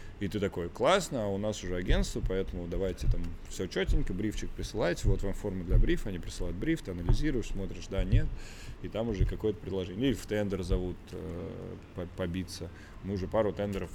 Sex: male